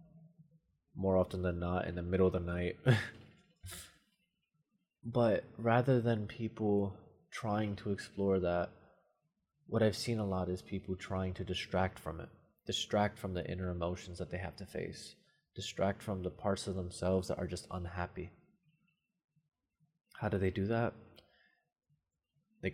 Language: English